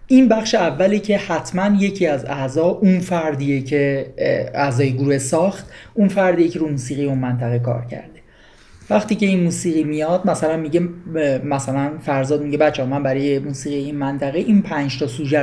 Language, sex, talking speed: English, male, 165 wpm